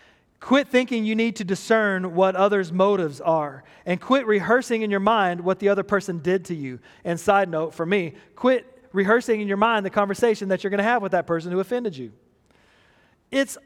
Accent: American